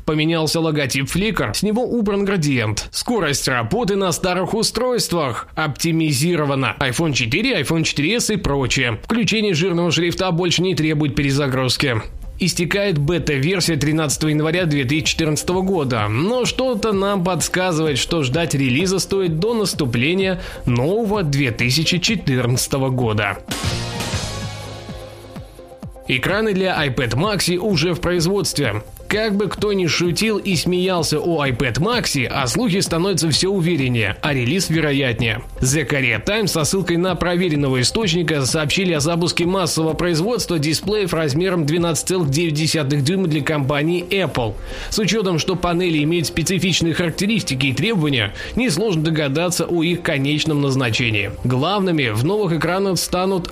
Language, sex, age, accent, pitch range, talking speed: Russian, male, 20-39, native, 140-185 Hz, 125 wpm